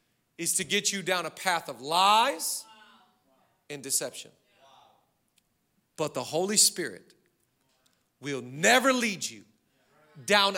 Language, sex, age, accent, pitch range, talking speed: English, male, 40-59, American, 200-250 Hz, 115 wpm